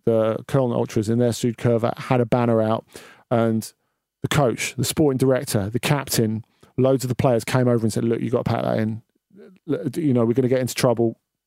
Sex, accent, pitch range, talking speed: male, British, 115-135 Hz, 220 wpm